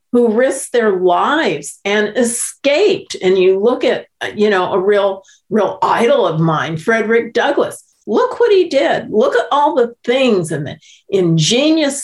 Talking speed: 160 wpm